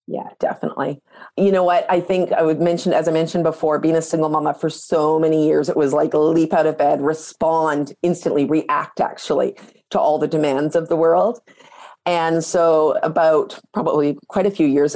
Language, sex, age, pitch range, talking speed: English, female, 40-59, 150-170 Hz, 195 wpm